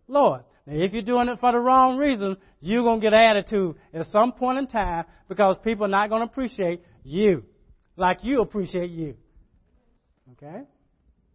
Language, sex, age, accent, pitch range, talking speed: English, male, 60-79, American, 155-220 Hz, 180 wpm